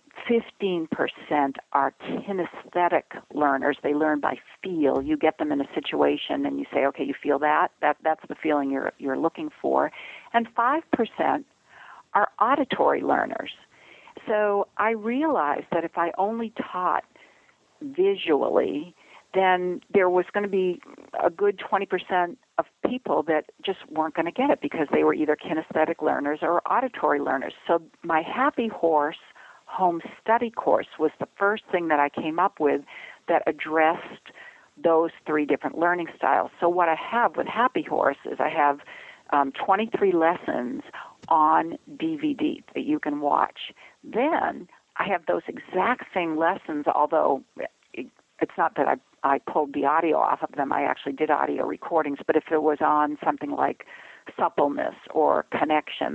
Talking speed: 155 wpm